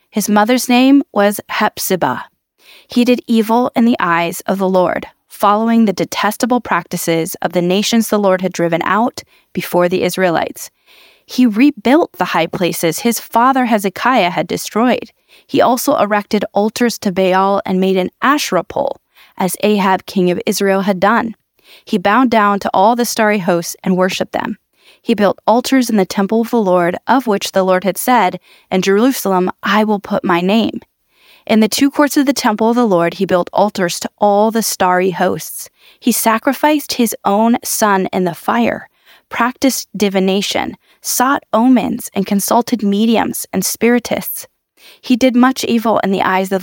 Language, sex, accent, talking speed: English, female, American, 170 wpm